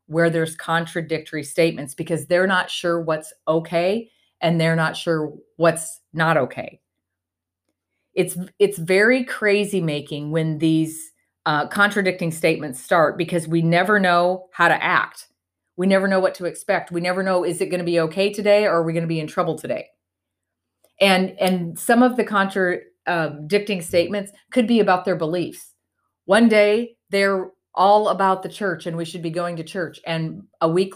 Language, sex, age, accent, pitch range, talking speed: English, female, 30-49, American, 165-205 Hz, 175 wpm